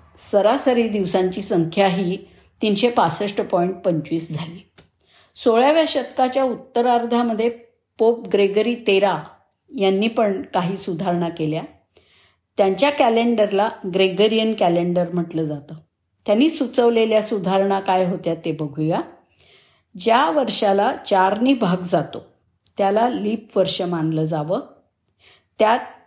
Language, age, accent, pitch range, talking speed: Marathi, 50-69, native, 175-235 Hz, 100 wpm